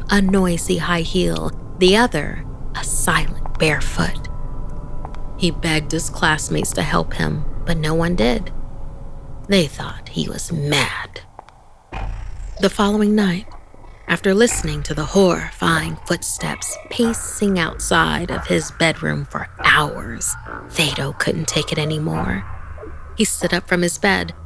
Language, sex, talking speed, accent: English, female, 130 wpm, American